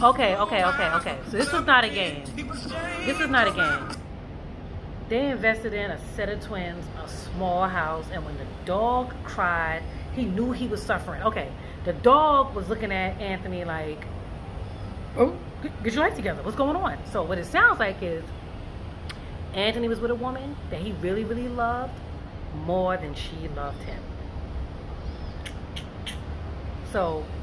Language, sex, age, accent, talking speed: English, female, 30-49, American, 160 wpm